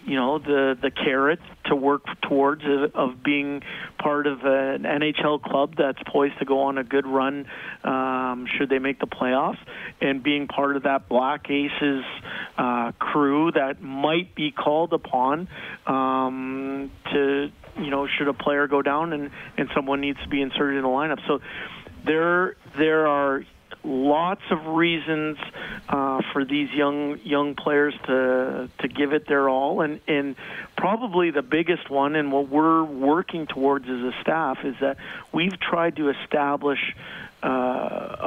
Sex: male